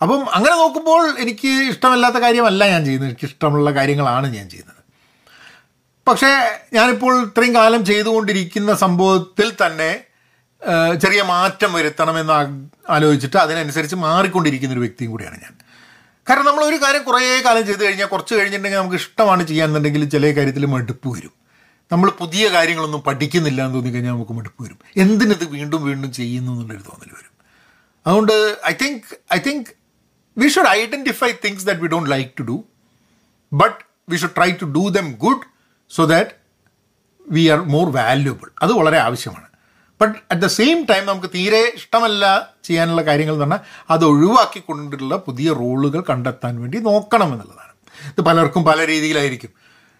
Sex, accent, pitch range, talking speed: male, native, 140-210 Hz, 150 wpm